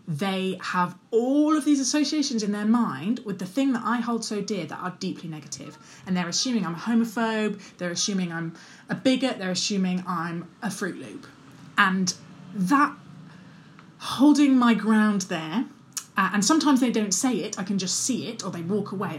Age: 20-39